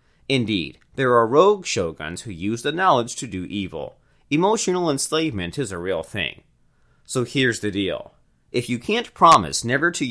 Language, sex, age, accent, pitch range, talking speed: English, male, 30-49, American, 100-155 Hz, 165 wpm